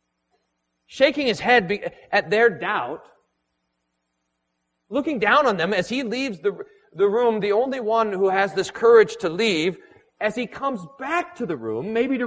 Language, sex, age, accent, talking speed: English, male, 40-59, American, 165 wpm